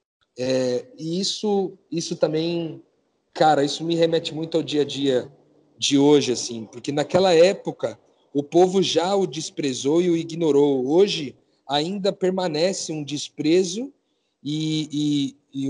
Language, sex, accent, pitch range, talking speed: Portuguese, male, Brazilian, 135-175 Hz, 140 wpm